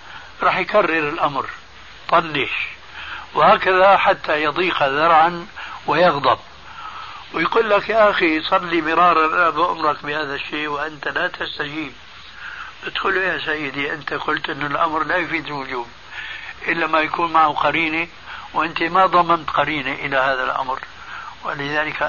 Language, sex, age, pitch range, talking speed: Arabic, male, 60-79, 145-180 Hz, 120 wpm